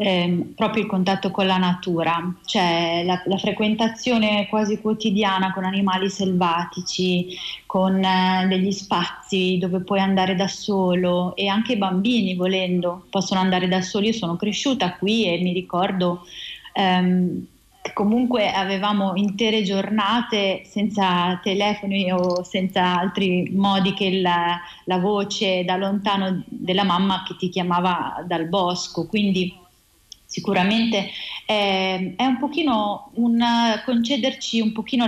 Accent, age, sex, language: native, 30-49, female, Italian